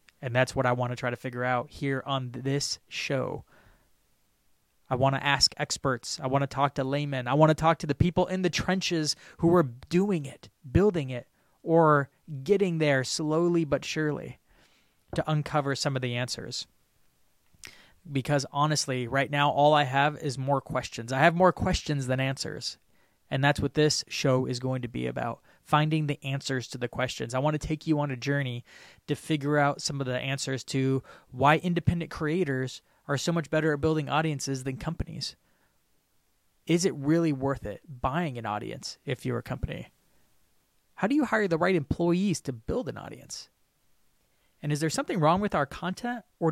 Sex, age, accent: male, 20-39, American